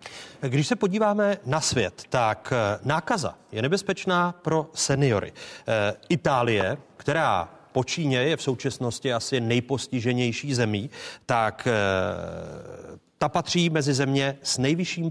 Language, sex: Czech, male